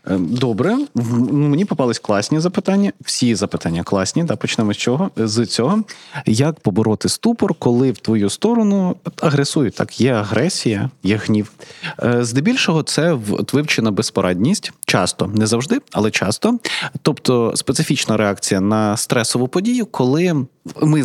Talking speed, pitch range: 125 wpm, 110-150 Hz